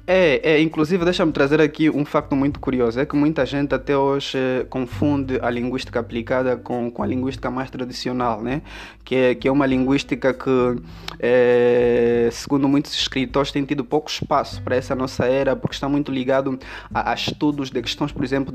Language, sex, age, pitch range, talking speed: Portuguese, male, 20-39, 130-145 Hz, 190 wpm